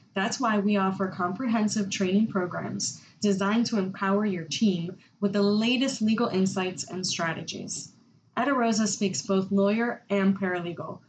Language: English